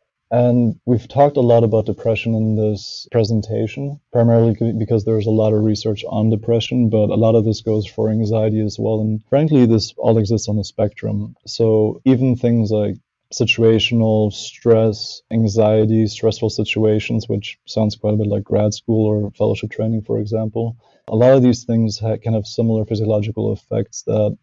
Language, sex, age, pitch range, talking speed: English, male, 20-39, 105-115 Hz, 170 wpm